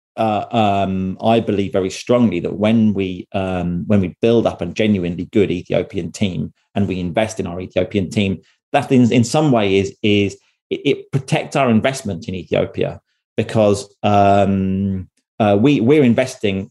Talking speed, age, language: 165 wpm, 30-49, English